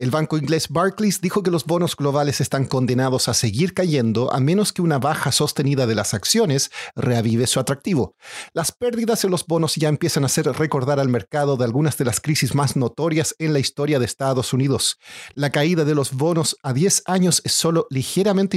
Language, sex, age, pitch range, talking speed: Spanish, male, 40-59, 130-165 Hz, 200 wpm